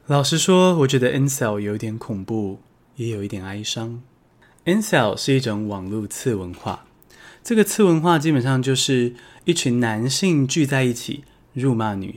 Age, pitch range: 20-39, 110-155 Hz